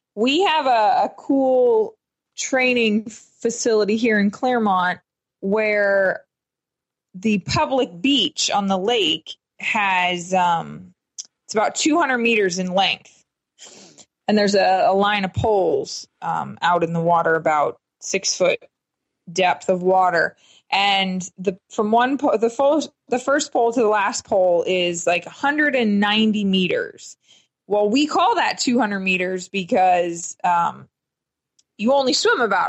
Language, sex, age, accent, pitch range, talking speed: English, female, 20-39, American, 185-235 Hz, 135 wpm